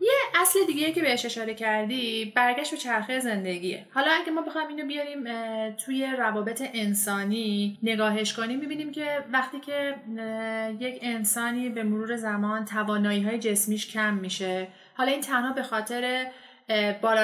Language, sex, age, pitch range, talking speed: Persian, female, 30-49, 220-270 Hz, 145 wpm